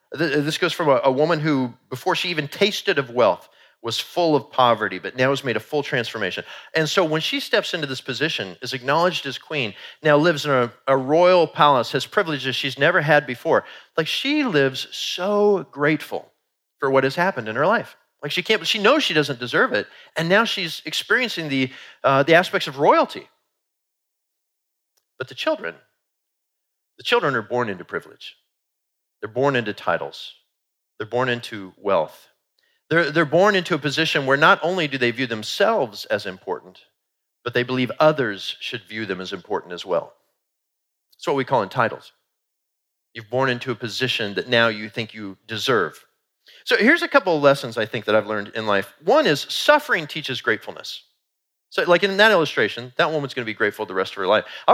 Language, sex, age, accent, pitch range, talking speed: English, male, 40-59, American, 125-170 Hz, 195 wpm